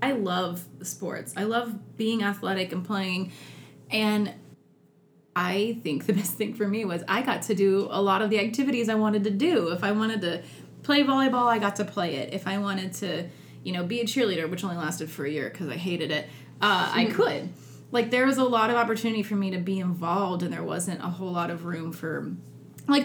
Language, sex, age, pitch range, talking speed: English, female, 20-39, 180-225 Hz, 225 wpm